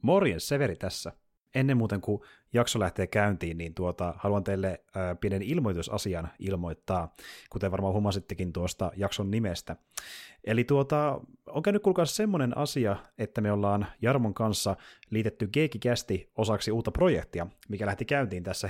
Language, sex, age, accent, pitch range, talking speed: Finnish, male, 30-49, native, 95-120 Hz, 140 wpm